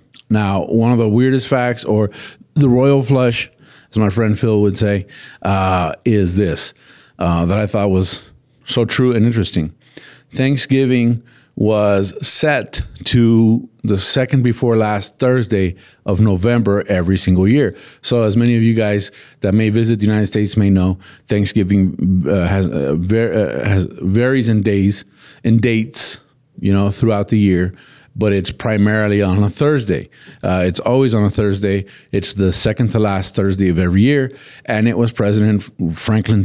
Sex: male